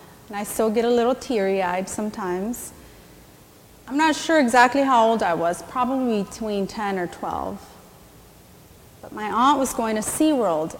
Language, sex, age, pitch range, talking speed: English, female, 30-49, 195-265 Hz, 155 wpm